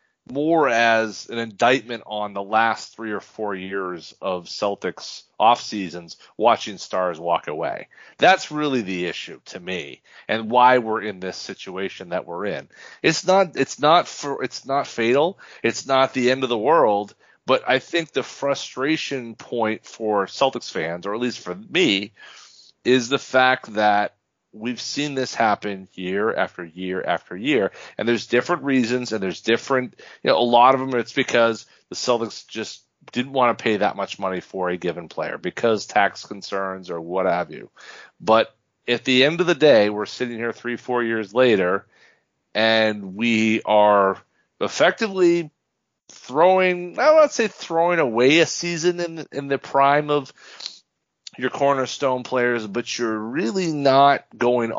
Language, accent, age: English, American, 40-59